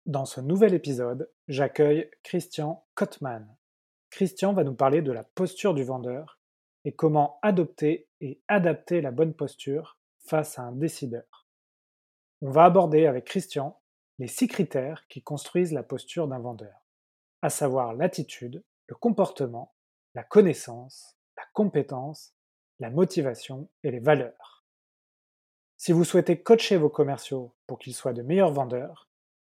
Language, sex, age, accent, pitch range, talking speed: French, male, 20-39, French, 130-170 Hz, 140 wpm